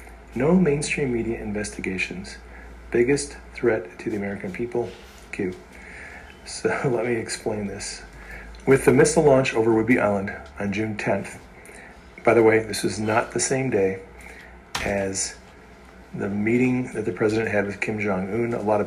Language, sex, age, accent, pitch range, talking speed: English, male, 40-59, American, 100-115 Hz, 155 wpm